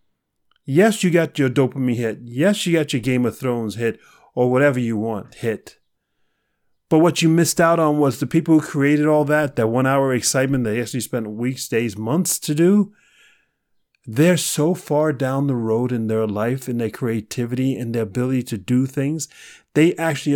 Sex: male